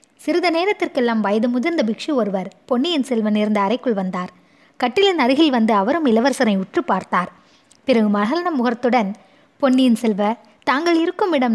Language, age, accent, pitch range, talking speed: Tamil, 20-39, native, 210-280 Hz, 135 wpm